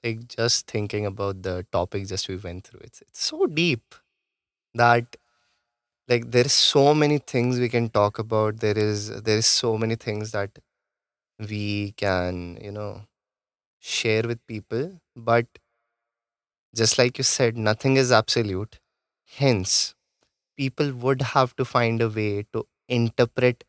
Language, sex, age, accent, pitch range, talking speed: English, male, 20-39, Indian, 105-125 Hz, 145 wpm